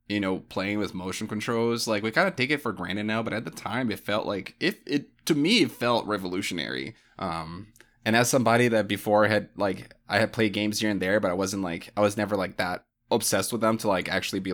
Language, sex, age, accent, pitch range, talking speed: English, male, 20-39, American, 90-110 Hz, 250 wpm